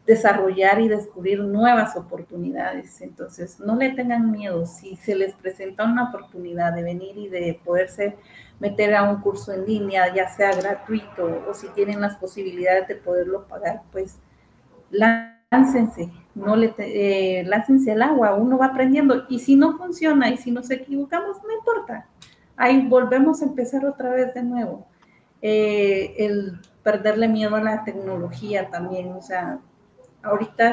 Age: 40-59